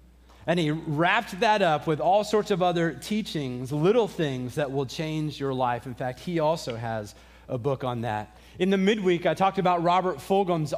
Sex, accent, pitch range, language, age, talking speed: male, American, 140-195 Hz, English, 30-49, 195 wpm